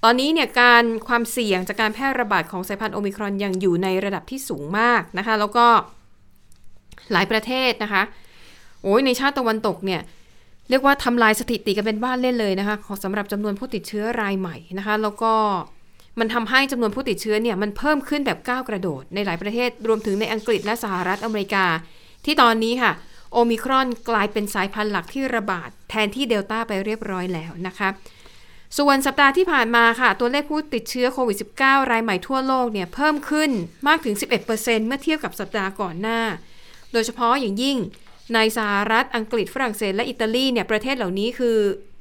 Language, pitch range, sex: Thai, 200-245 Hz, female